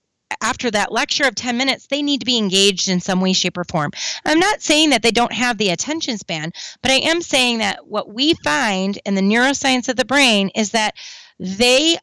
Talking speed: 220 wpm